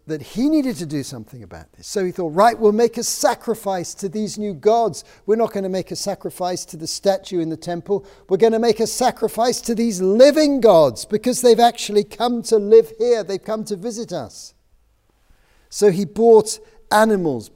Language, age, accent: English, 50-69, British